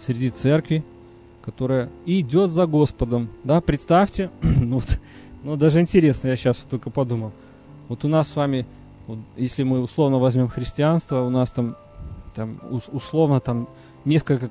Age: 20-39